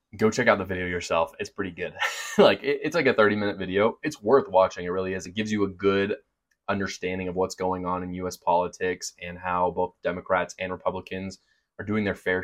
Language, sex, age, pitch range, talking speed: English, male, 20-39, 95-110 Hz, 215 wpm